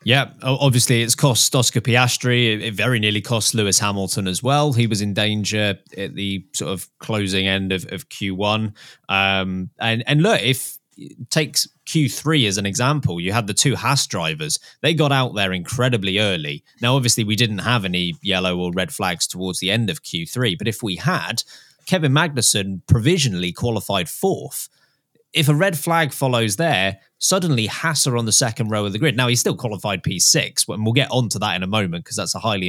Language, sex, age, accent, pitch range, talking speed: English, male, 20-39, British, 105-145 Hz, 195 wpm